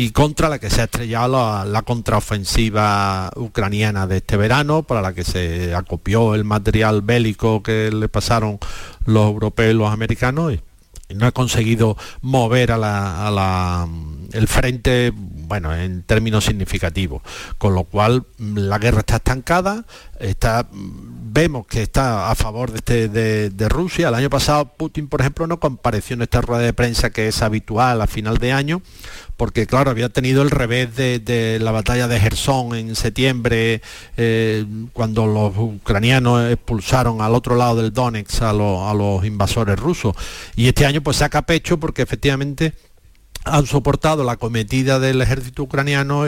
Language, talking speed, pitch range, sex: Spanish, 170 wpm, 100-125 Hz, male